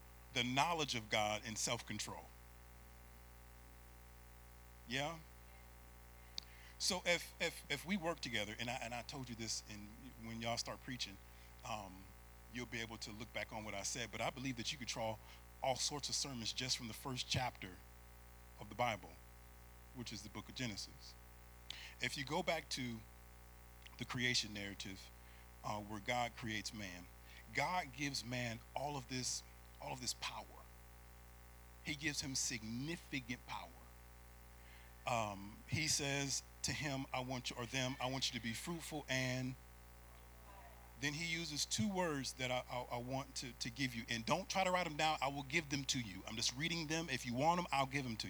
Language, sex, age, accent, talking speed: English, male, 40-59, American, 180 wpm